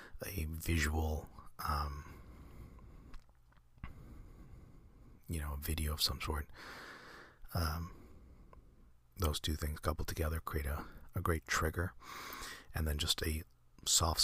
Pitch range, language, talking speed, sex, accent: 70-85 Hz, English, 110 wpm, male, American